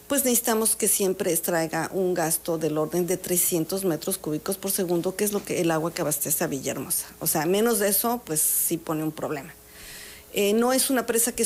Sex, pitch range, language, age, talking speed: female, 170-210 Hz, Spanish, 50-69, 215 wpm